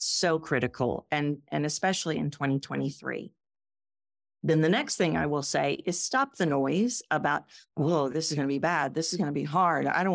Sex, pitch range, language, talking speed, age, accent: female, 155-220 Hz, English, 205 wpm, 50-69, American